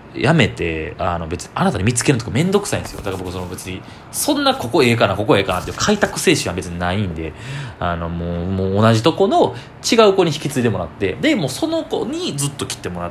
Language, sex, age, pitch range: Japanese, male, 20-39, 95-140 Hz